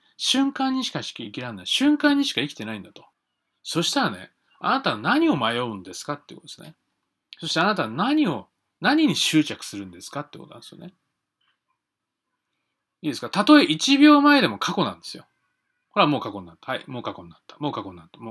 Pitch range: 145-230 Hz